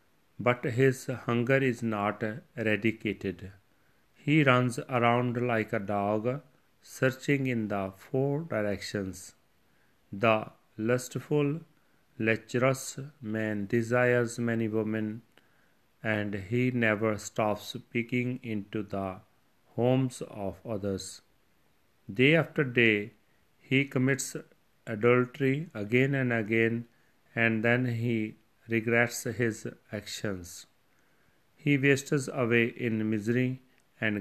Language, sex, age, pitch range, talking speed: Punjabi, male, 40-59, 105-125 Hz, 95 wpm